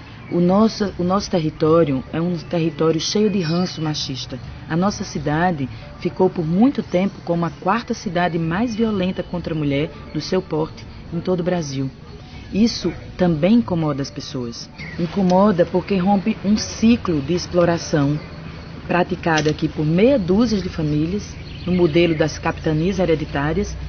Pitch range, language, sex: 155-190 Hz, Portuguese, female